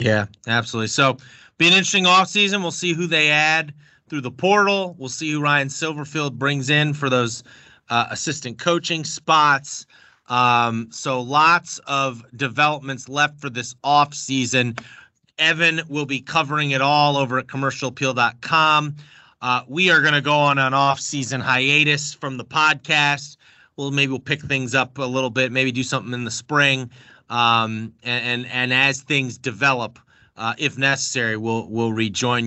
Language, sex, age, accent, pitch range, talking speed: English, male, 30-49, American, 125-145 Hz, 160 wpm